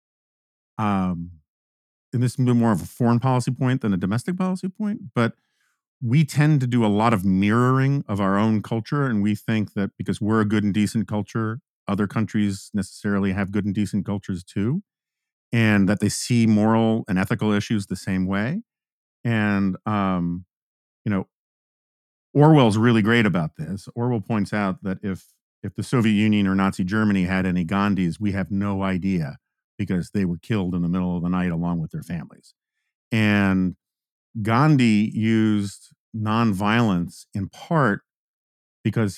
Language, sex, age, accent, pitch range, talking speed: English, male, 50-69, American, 100-120 Hz, 165 wpm